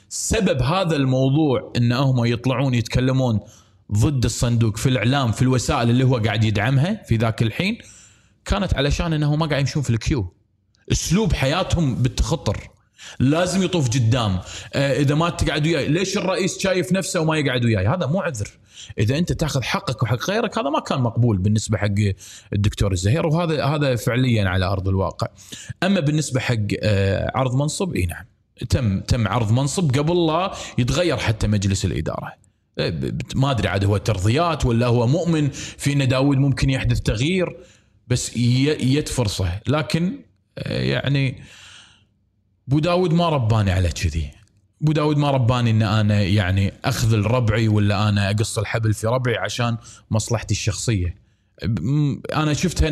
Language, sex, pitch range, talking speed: Arabic, male, 105-145 Hz, 145 wpm